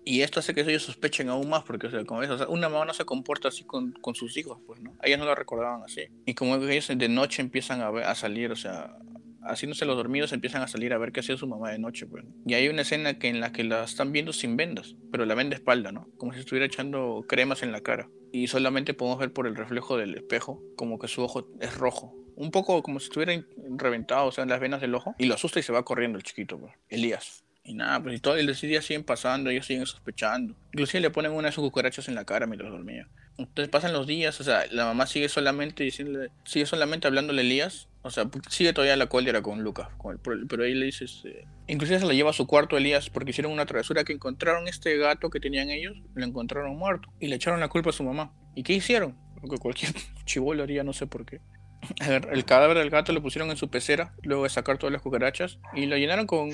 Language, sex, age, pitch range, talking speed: Spanish, male, 30-49, 125-150 Hz, 255 wpm